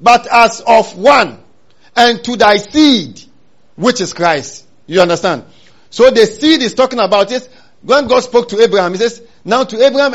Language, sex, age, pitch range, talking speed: English, male, 50-69, 190-255 Hz, 175 wpm